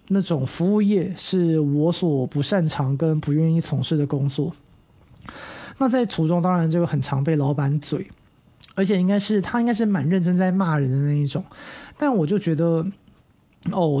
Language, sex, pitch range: Chinese, male, 155-190 Hz